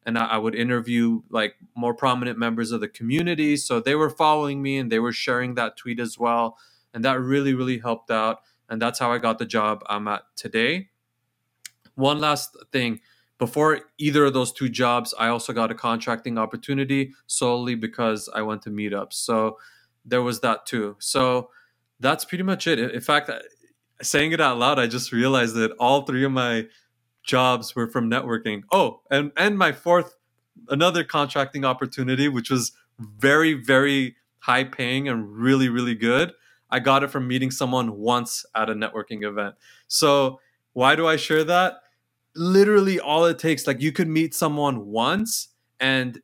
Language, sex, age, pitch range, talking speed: English, male, 20-39, 115-140 Hz, 175 wpm